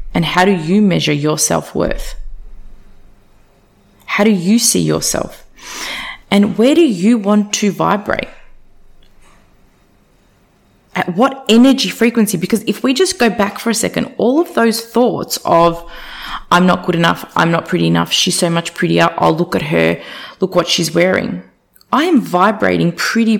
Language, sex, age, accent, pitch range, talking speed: English, female, 20-39, Australian, 180-235 Hz, 160 wpm